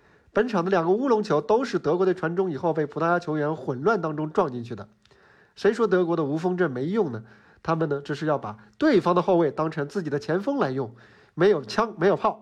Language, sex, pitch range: Chinese, male, 145-195 Hz